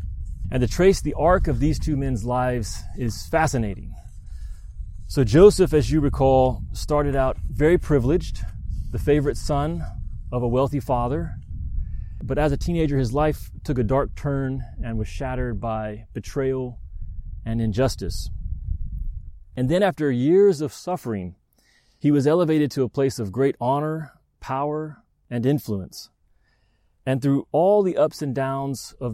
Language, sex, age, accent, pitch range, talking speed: English, male, 30-49, American, 95-145 Hz, 145 wpm